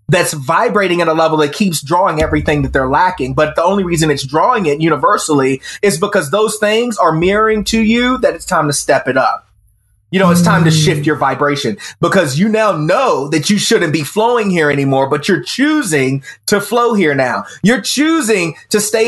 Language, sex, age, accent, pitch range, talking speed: English, male, 30-49, American, 155-215 Hz, 205 wpm